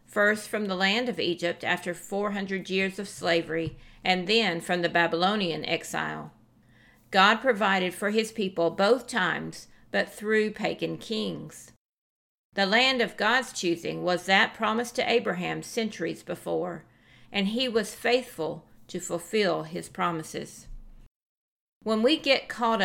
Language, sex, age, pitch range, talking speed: English, female, 50-69, 170-225 Hz, 135 wpm